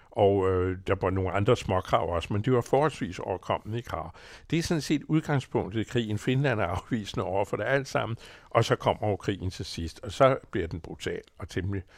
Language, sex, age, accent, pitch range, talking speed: Danish, male, 60-79, American, 90-115 Hz, 220 wpm